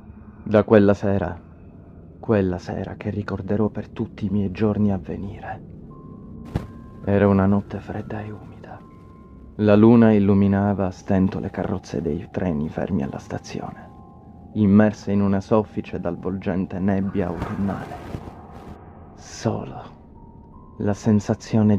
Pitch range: 95-110 Hz